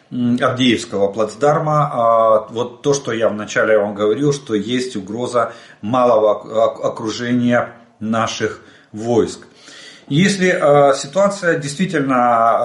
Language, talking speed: Russian, 90 wpm